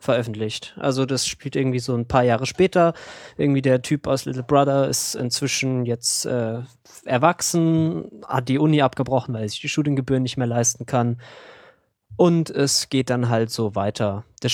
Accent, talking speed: German, 175 wpm